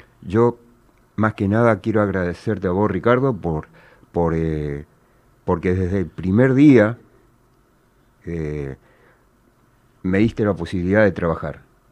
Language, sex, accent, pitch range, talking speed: Spanish, male, Argentinian, 85-120 Hz, 110 wpm